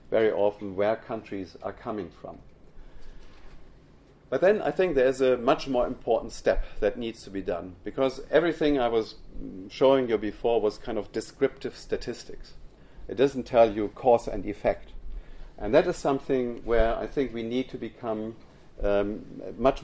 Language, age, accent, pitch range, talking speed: English, 50-69, German, 105-135 Hz, 165 wpm